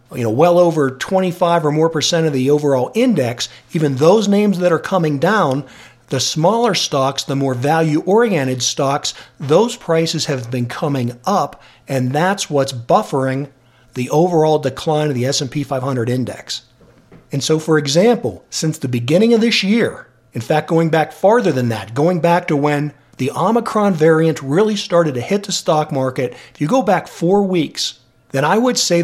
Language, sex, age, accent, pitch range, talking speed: English, male, 50-69, American, 130-185 Hz, 180 wpm